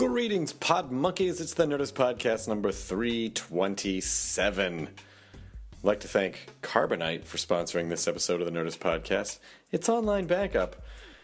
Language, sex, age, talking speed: English, male, 30-49, 130 wpm